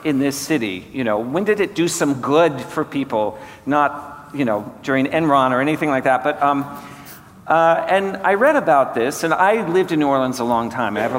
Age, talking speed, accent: 50-69, 220 wpm, American